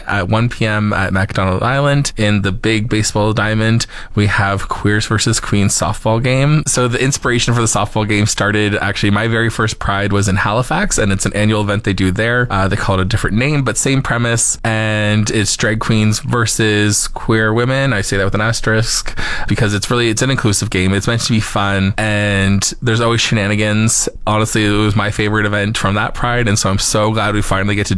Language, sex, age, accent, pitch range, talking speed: English, male, 20-39, American, 100-115 Hz, 210 wpm